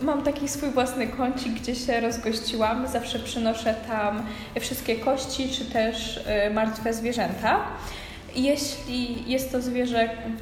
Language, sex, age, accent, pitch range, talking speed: Polish, female, 20-39, native, 210-260 Hz, 125 wpm